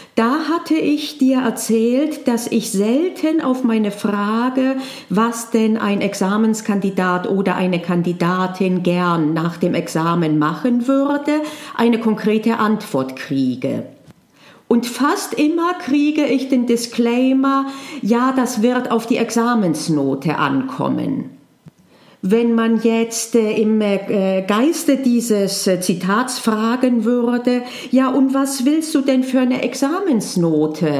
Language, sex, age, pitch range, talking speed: German, female, 40-59, 195-260 Hz, 115 wpm